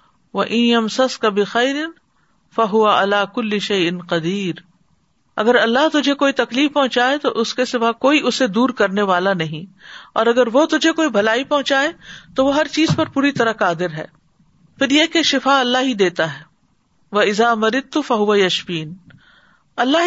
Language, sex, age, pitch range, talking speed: Urdu, female, 50-69, 185-250 Hz, 145 wpm